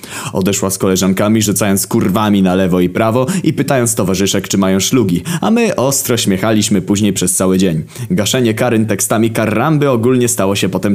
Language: Polish